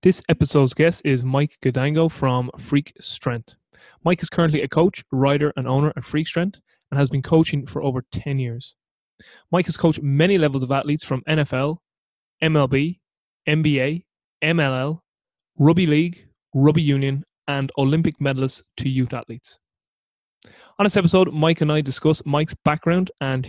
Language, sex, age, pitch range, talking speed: English, male, 20-39, 130-155 Hz, 155 wpm